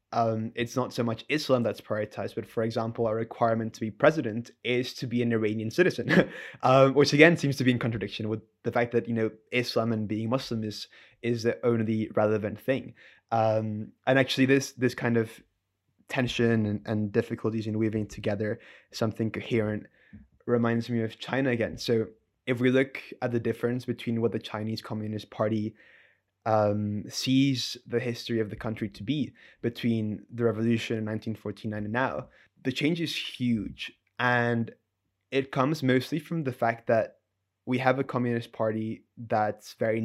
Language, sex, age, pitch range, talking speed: English, male, 20-39, 110-125 Hz, 170 wpm